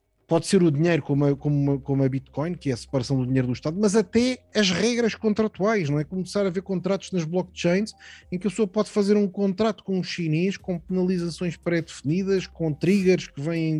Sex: male